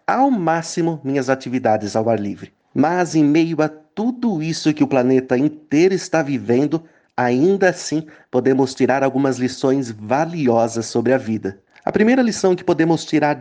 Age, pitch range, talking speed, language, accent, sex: 30-49, 120-160 Hz, 155 wpm, Portuguese, Brazilian, male